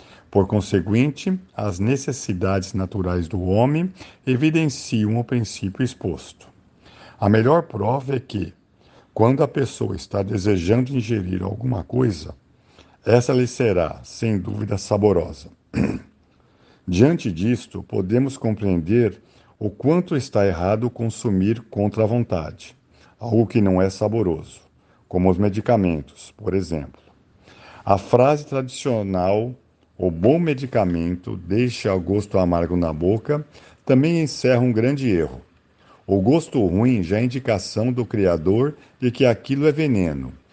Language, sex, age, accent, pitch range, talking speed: Portuguese, male, 50-69, Brazilian, 95-125 Hz, 120 wpm